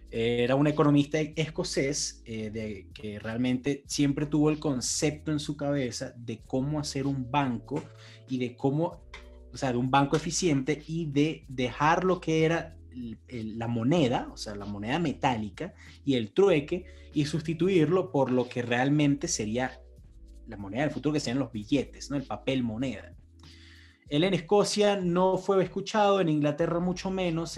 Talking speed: 160 wpm